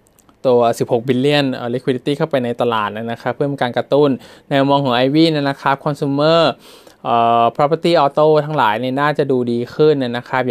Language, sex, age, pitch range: Thai, male, 20-39, 120-140 Hz